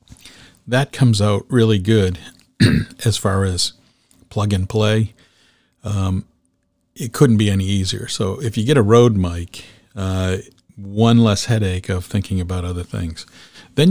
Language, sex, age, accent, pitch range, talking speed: English, male, 50-69, American, 95-115 Hz, 140 wpm